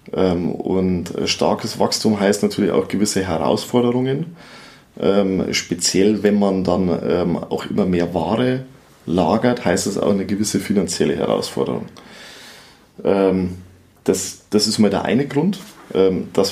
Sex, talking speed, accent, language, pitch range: male, 115 wpm, German, German, 90-110 Hz